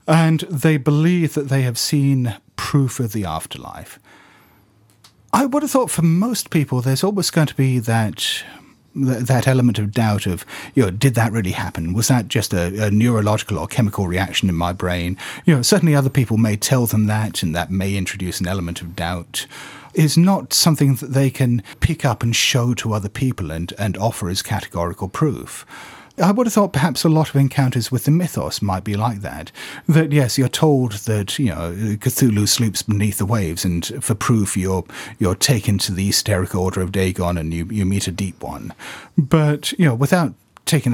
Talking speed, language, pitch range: 200 wpm, English, 100-140 Hz